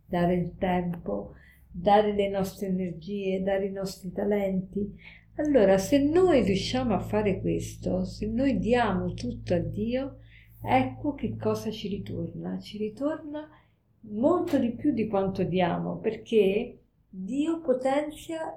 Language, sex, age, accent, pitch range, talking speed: Italian, female, 50-69, native, 190-245 Hz, 130 wpm